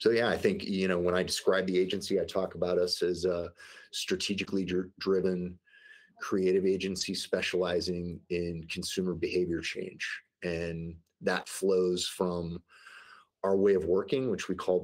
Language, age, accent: English, 30-49, American